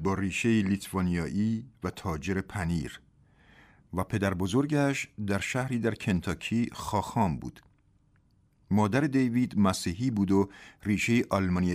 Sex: male